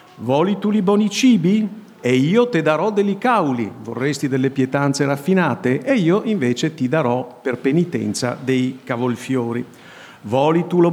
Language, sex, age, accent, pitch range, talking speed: Italian, male, 50-69, native, 130-190 Hz, 150 wpm